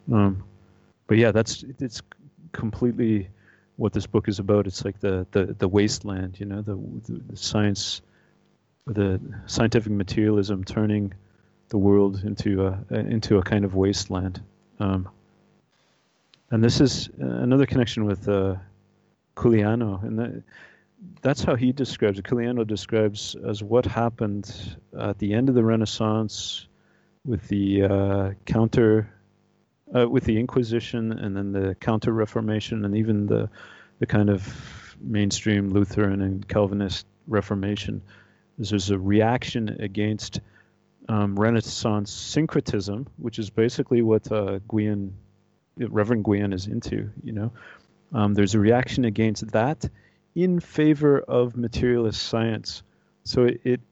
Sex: male